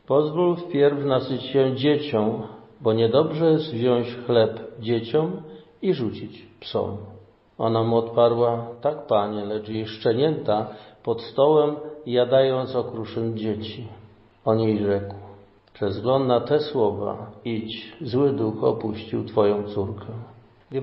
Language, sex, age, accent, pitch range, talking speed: Polish, male, 50-69, native, 110-130 Hz, 120 wpm